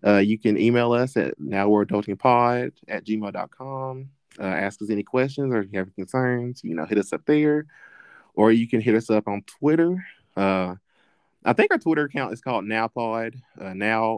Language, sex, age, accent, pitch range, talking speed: English, male, 20-39, American, 100-125 Hz, 190 wpm